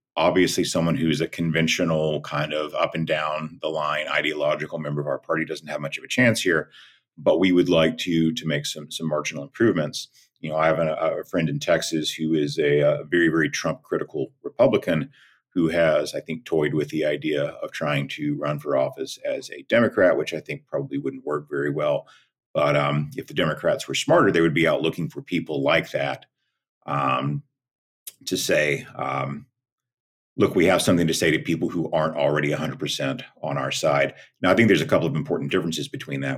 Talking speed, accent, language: 205 wpm, American, English